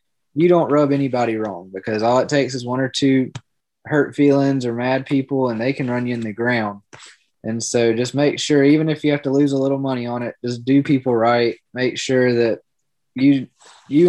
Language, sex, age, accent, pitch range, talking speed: English, male, 20-39, American, 115-135 Hz, 215 wpm